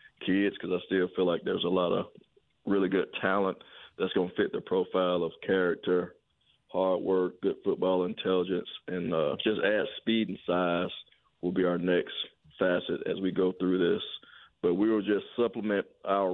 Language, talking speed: English, 180 wpm